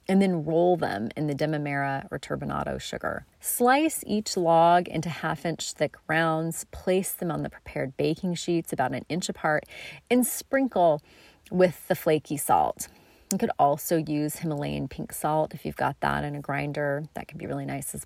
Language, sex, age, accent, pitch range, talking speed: English, female, 30-49, American, 150-190 Hz, 180 wpm